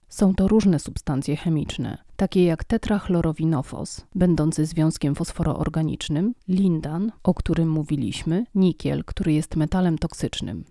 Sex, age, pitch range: female, 30-49, 155-185 Hz